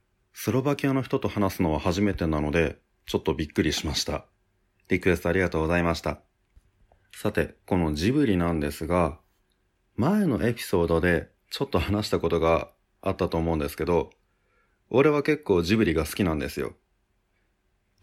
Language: Japanese